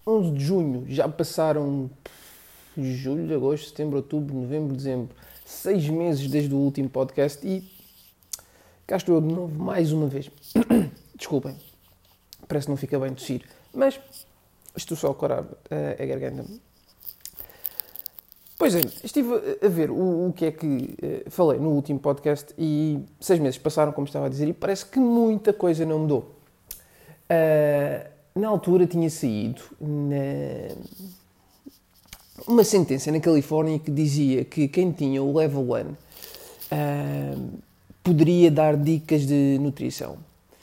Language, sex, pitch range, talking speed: Portuguese, male, 140-185 Hz, 140 wpm